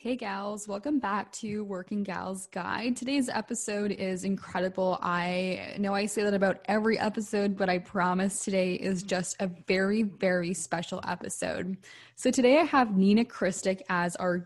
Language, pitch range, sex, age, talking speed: English, 185-220 Hz, female, 10-29, 160 wpm